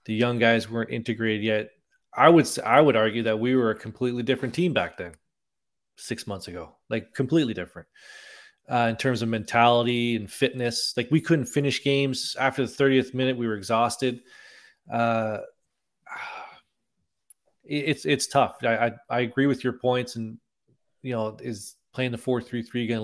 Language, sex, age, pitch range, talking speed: English, male, 20-39, 115-135 Hz, 175 wpm